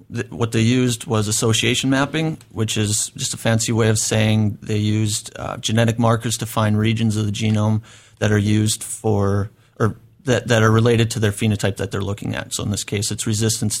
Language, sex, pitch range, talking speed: English, male, 110-120 Hz, 205 wpm